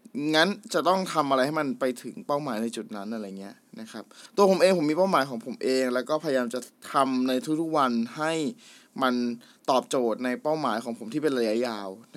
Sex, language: male, Thai